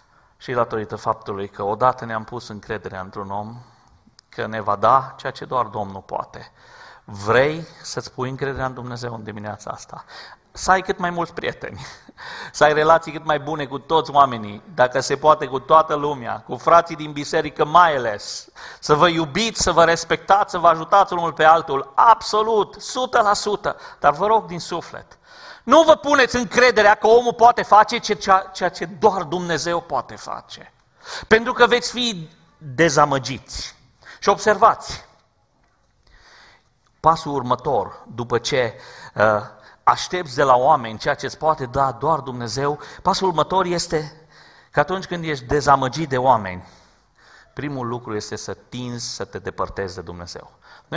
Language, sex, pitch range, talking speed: Romanian, male, 125-185 Hz, 155 wpm